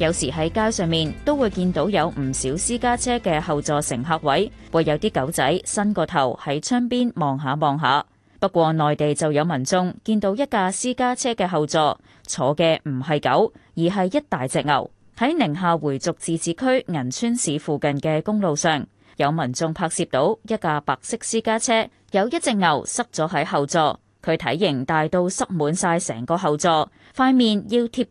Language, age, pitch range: Chinese, 20-39, 150-220 Hz